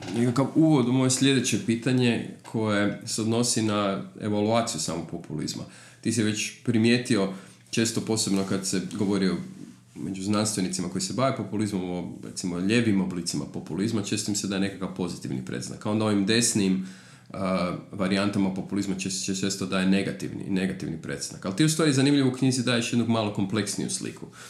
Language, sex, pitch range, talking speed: Croatian, male, 95-120 Hz, 165 wpm